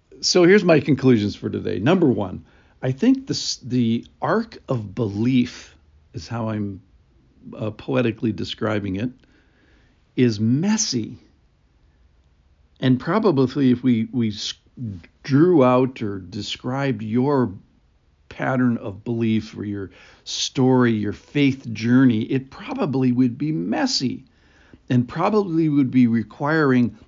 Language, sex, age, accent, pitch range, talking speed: English, male, 60-79, American, 115-155 Hz, 115 wpm